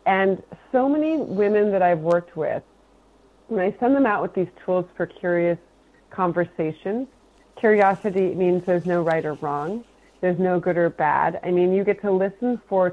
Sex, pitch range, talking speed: female, 170-210 Hz, 175 wpm